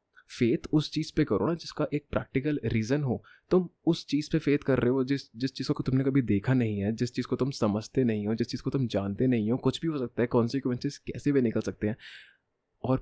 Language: Hindi